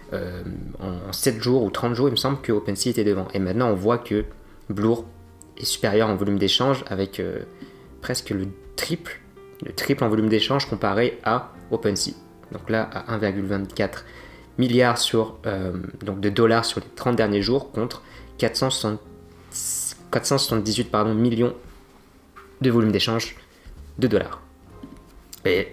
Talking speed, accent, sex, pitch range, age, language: 140 wpm, French, male, 100-125 Hz, 20-39, French